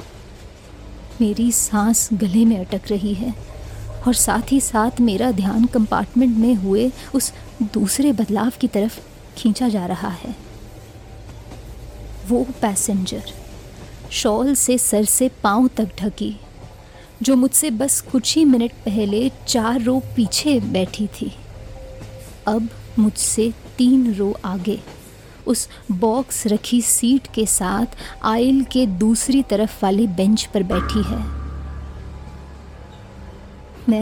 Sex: female